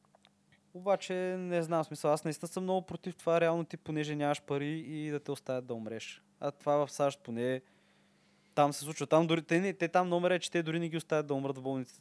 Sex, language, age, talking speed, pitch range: male, Bulgarian, 20-39, 235 wpm, 130-160 Hz